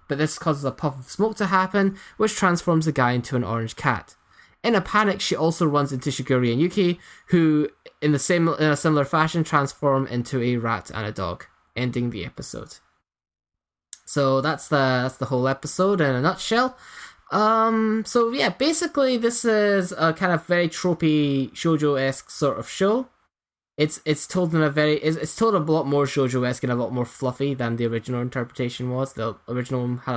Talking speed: 190 wpm